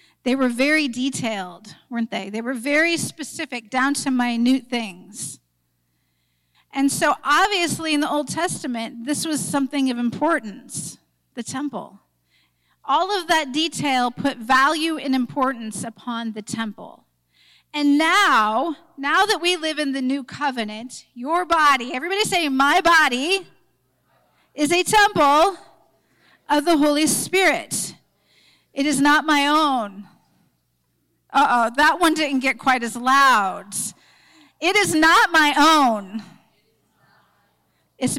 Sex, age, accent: female, 40-59, American